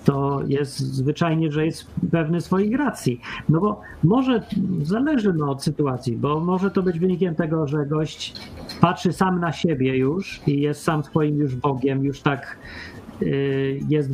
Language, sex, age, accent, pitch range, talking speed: Polish, male, 40-59, native, 140-185 Hz, 155 wpm